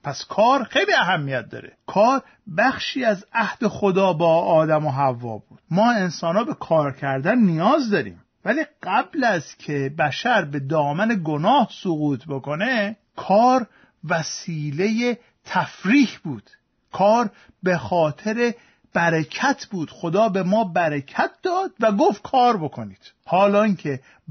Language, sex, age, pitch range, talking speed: Persian, male, 50-69, 150-215 Hz, 130 wpm